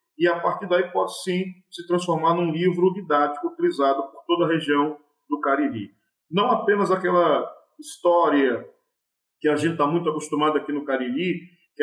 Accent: Brazilian